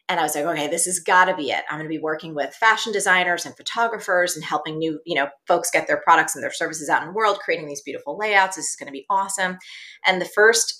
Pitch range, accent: 155-195 Hz, American